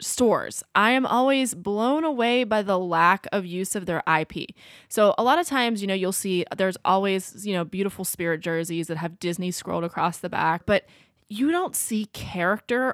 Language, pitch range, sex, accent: English, 175-225 Hz, female, American